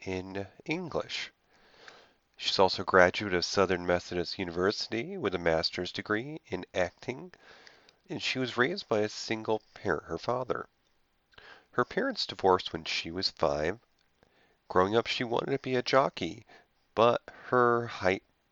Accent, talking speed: American, 145 wpm